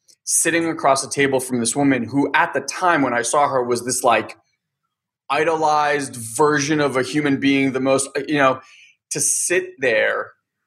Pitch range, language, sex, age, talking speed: 120-150 Hz, English, male, 20-39, 175 wpm